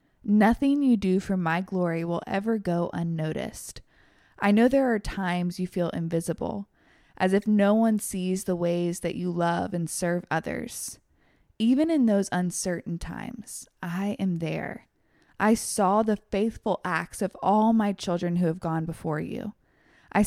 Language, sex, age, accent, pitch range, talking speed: English, female, 20-39, American, 175-215 Hz, 160 wpm